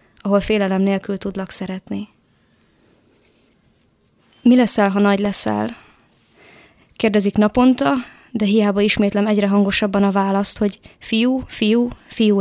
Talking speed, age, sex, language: 110 wpm, 20-39, female, Hungarian